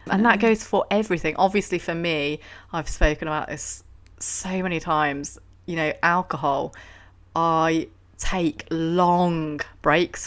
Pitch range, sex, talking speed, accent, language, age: 135-155 Hz, female, 130 wpm, British, English, 30-49